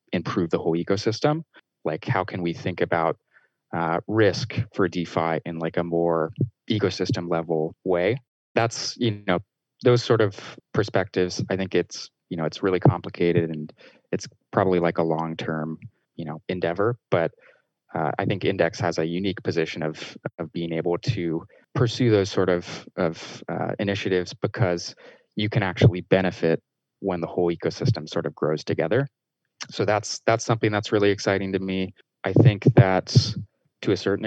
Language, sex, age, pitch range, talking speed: English, male, 20-39, 85-105 Hz, 165 wpm